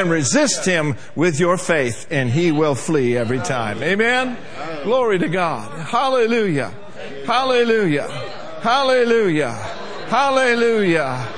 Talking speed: 105 wpm